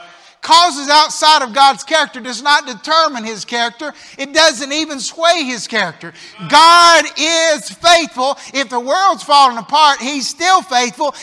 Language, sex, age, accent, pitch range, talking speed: English, male, 50-69, American, 270-335 Hz, 145 wpm